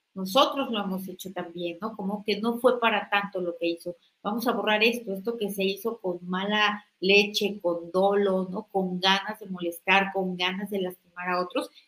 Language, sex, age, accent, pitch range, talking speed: Spanish, female, 40-59, Mexican, 190-220 Hz, 195 wpm